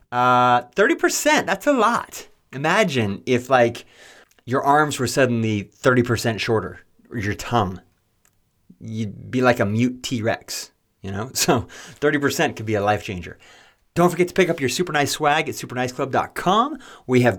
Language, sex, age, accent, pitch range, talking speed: English, male, 30-49, American, 105-150 Hz, 155 wpm